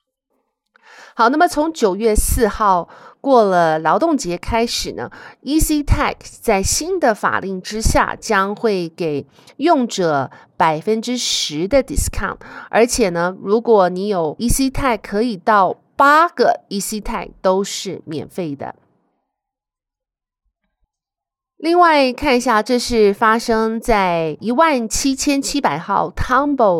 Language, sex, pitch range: Chinese, female, 180-265 Hz